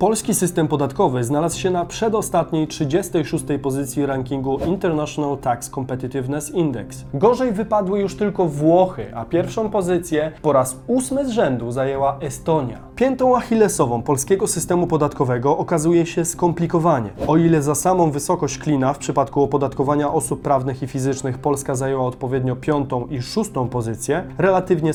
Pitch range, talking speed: 135-180 Hz, 140 wpm